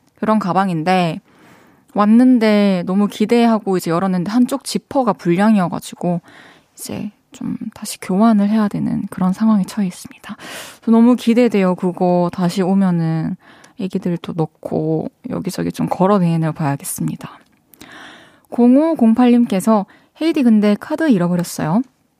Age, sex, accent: 20-39, female, native